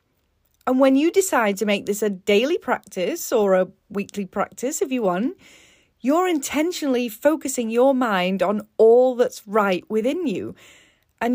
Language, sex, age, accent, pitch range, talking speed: English, female, 30-49, British, 205-270 Hz, 155 wpm